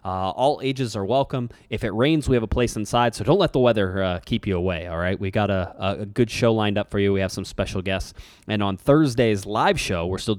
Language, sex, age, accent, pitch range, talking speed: English, male, 20-39, American, 90-115 Hz, 265 wpm